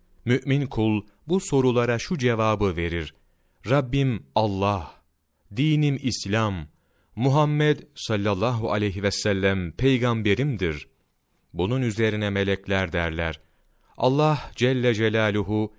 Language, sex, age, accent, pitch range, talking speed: Turkish, male, 40-59, native, 95-130 Hz, 90 wpm